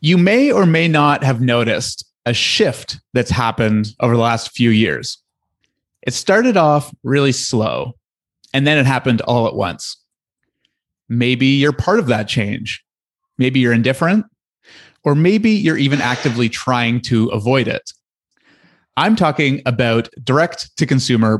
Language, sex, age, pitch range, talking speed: English, male, 30-49, 115-150 Hz, 140 wpm